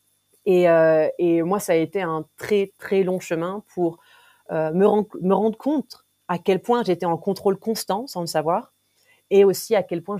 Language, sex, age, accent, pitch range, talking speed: French, female, 30-49, French, 160-195 Hz, 200 wpm